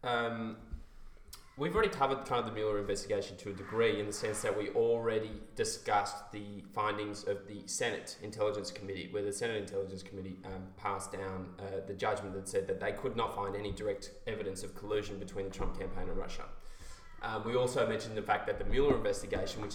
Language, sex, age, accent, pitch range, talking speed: English, male, 20-39, Australian, 95-110 Hz, 200 wpm